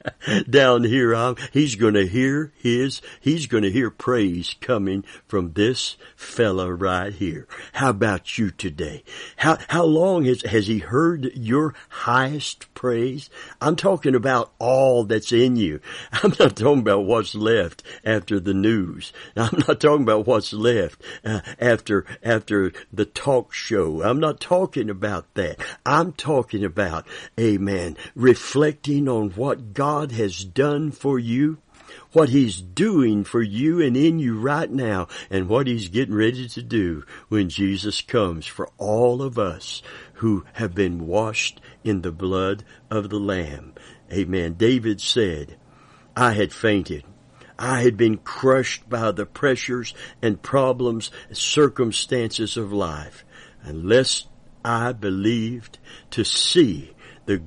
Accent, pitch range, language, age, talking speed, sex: American, 100-130 Hz, English, 60-79, 140 wpm, male